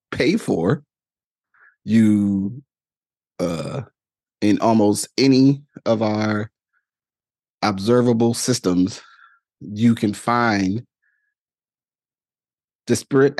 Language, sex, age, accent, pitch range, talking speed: English, male, 30-49, American, 100-125 Hz, 65 wpm